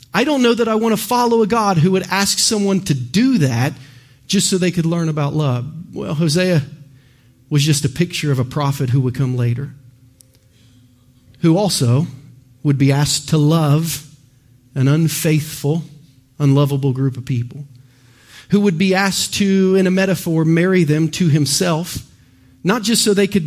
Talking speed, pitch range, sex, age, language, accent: 170 wpm, 130-175 Hz, male, 40-59, English, American